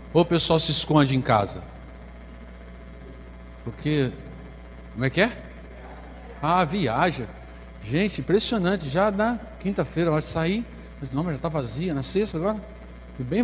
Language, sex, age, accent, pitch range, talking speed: Portuguese, male, 60-79, Brazilian, 105-160 Hz, 145 wpm